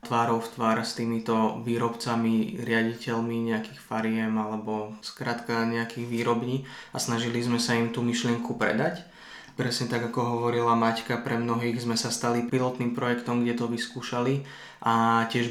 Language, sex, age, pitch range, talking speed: Slovak, male, 20-39, 115-125 Hz, 145 wpm